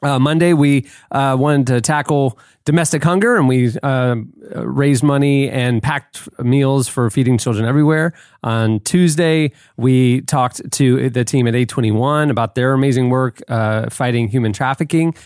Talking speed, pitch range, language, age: 150 wpm, 120-140 Hz, English, 30-49